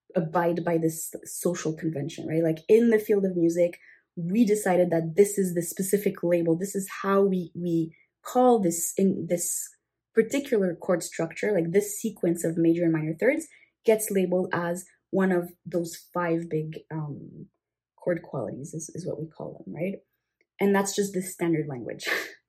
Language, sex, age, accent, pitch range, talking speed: English, female, 20-39, Canadian, 170-220 Hz, 170 wpm